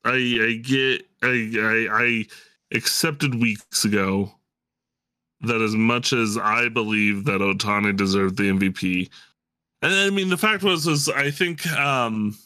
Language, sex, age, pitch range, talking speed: English, male, 20-39, 100-135 Hz, 155 wpm